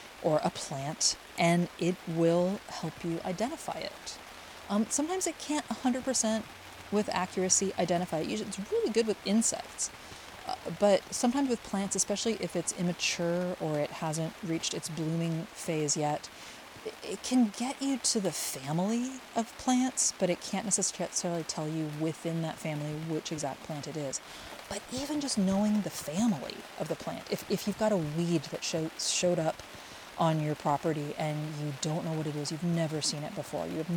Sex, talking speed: female, 175 wpm